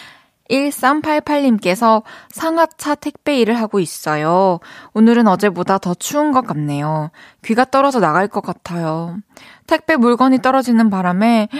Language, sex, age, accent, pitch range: Korean, female, 20-39, native, 195-270 Hz